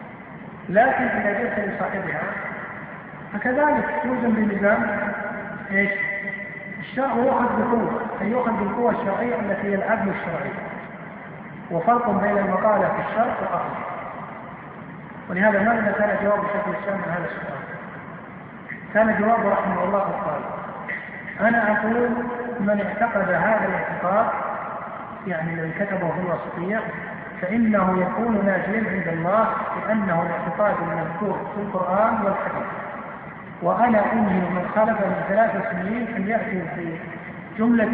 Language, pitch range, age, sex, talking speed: Arabic, 195-220 Hz, 50-69, male, 110 wpm